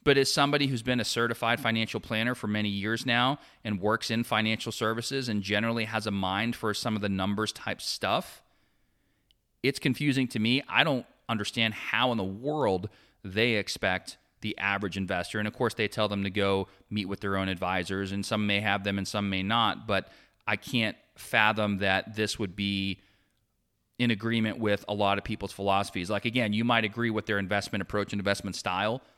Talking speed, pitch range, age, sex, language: 195 wpm, 95-115 Hz, 30-49, male, English